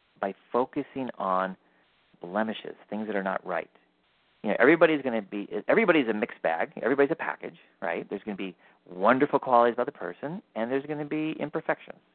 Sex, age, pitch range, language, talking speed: male, 40-59, 90-125 Hz, English, 190 wpm